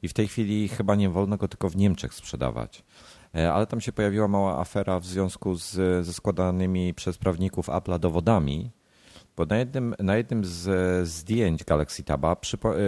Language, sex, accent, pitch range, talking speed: Polish, male, native, 80-100 Hz, 170 wpm